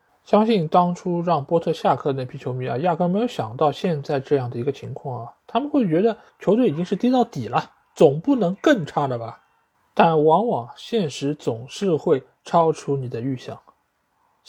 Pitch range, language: 140-205 Hz, Chinese